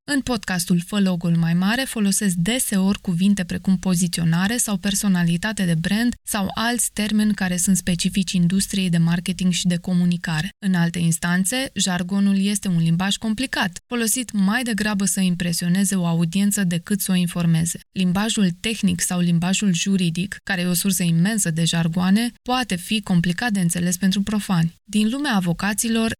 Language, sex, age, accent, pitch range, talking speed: Romanian, female, 20-39, native, 175-210 Hz, 155 wpm